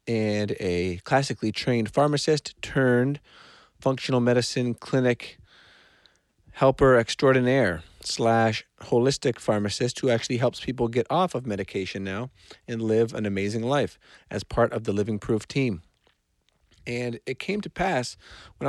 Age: 40-59